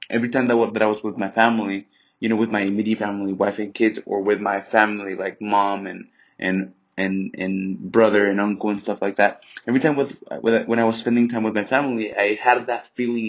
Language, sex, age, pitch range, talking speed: English, male, 20-39, 105-120 Hz, 230 wpm